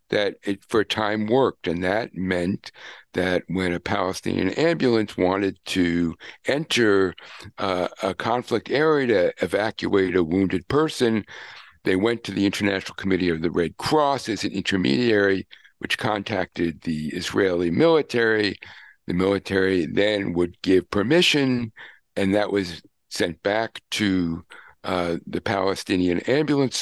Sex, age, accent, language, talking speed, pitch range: male, 60-79, American, English, 135 wpm, 90-115 Hz